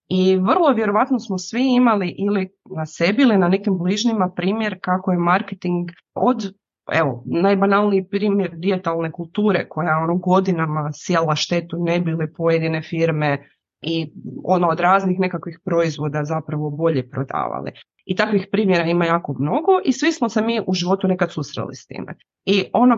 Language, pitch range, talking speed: Croatian, 165-200 Hz, 155 wpm